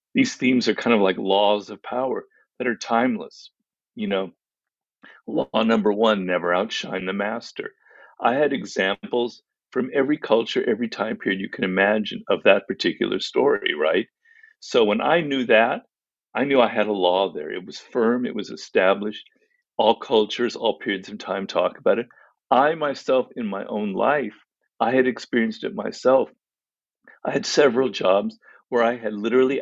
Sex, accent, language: male, American, English